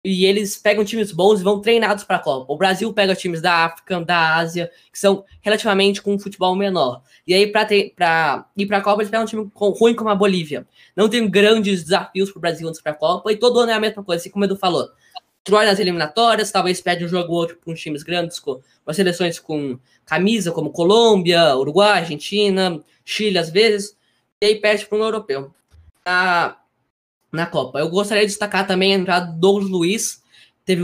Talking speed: 220 wpm